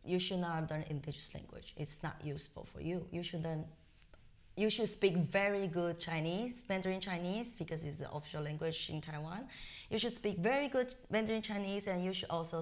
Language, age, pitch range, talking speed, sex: English, 20-39, 155-200 Hz, 190 wpm, female